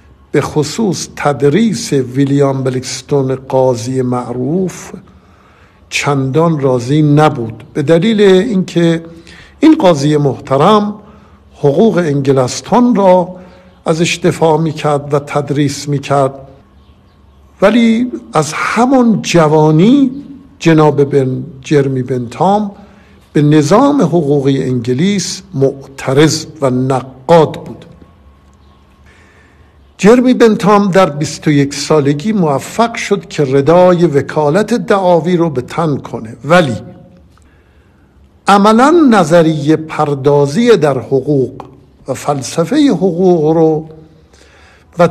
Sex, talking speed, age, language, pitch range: male, 85 wpm, 60-79, Persian, 130-180 Hz